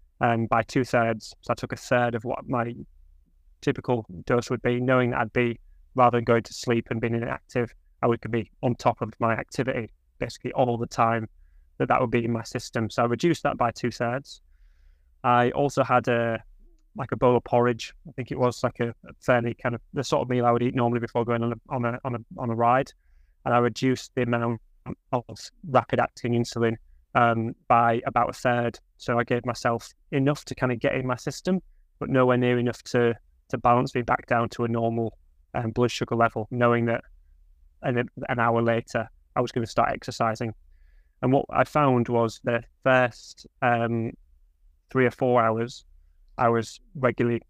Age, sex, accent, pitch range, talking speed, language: 20-39, male, British, 115-125 Hz, 205 wpm, English